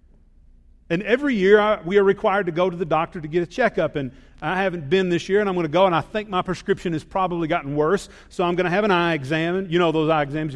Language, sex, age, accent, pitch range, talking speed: English, male, 40-59, American, 125-195 Hz, 275 wpm